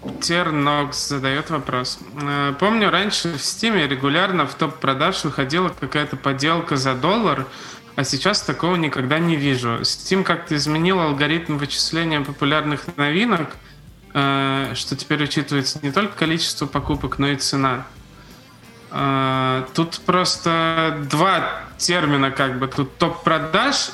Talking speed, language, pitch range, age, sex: 115 wpm, Russian, 135-170 Hz, 20-39, male